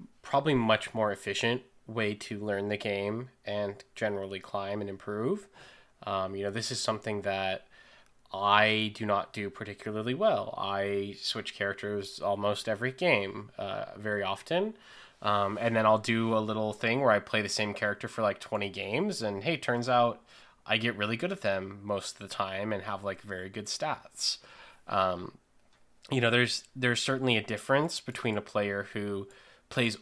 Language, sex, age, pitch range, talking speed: English, male, 20-39, 100-115 Hz, 175 wpm